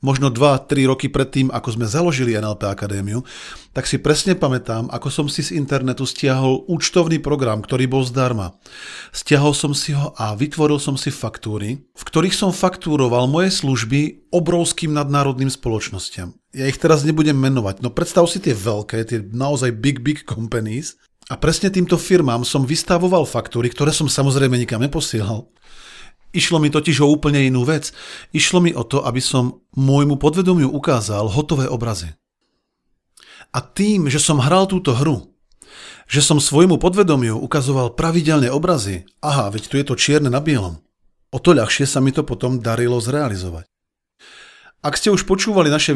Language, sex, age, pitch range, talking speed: Slovak, male, 40-59, 125-155 Hz, 160 wpm